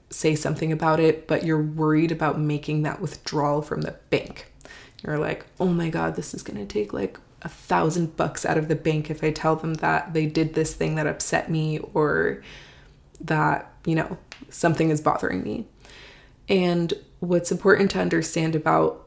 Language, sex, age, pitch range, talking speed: English, female, 20-39, 155-170 Hz, 180 wpm